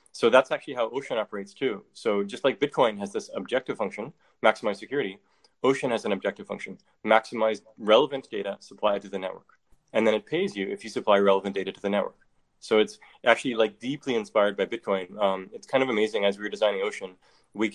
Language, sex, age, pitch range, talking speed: English, male, 20-39, 100-125 Hz, 205 wpm